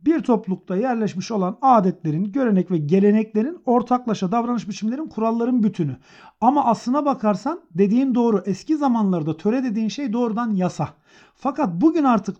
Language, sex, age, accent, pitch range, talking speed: Turkish, male, 50-69, native, 180-225 Hz, 135 wpm